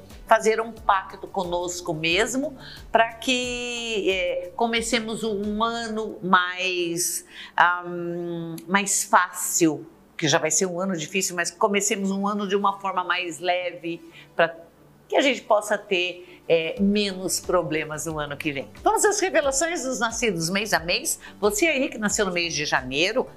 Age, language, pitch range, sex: 50-69, Portuguese, 170-225 Hz, female